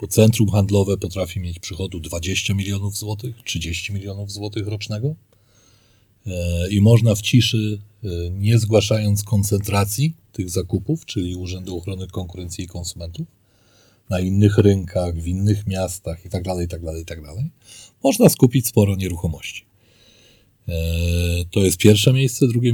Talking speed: 125 wpm